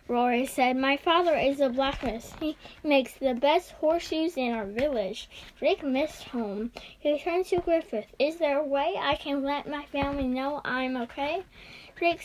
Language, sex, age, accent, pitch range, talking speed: English, female, 10-29, American, 255-310 Hz, 170 wpm